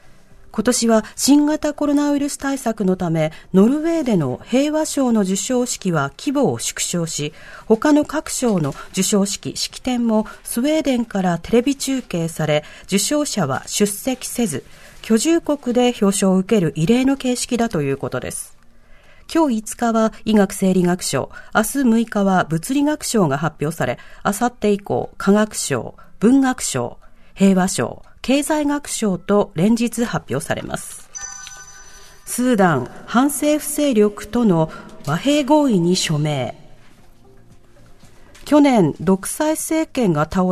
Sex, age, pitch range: female, 40-59, 180-270 Hz